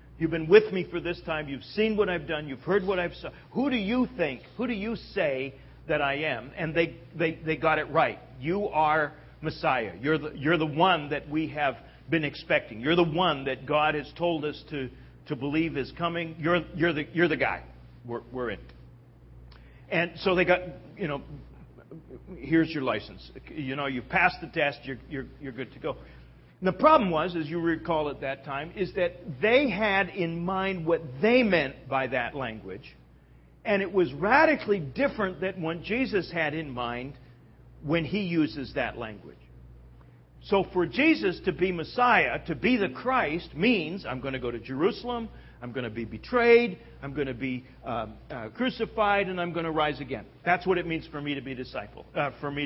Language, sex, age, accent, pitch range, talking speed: English, male, 50-69, American, 135-180 Hz, 200 wpm